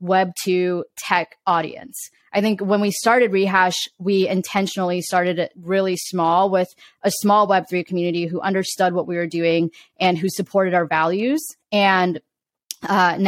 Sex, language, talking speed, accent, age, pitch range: female, English, 150 wpm, American, 20-39, 175-205 Hz